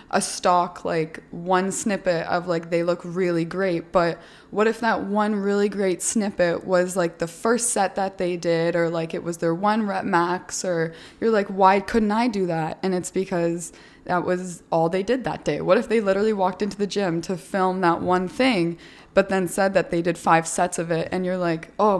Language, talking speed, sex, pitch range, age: English, 220 wpm, female, 165-190 Hz, 20-39